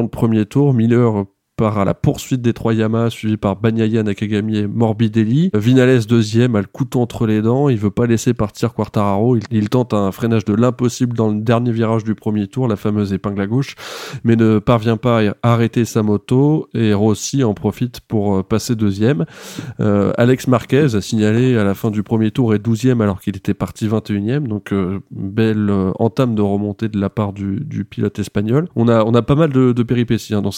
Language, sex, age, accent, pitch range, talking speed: French, male, 20-39, French, 105-120 Hz, 210 wpm